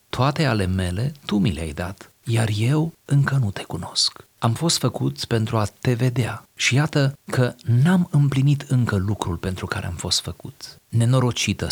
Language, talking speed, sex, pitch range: Romanian, 170 wpm, male, 100-130 Hz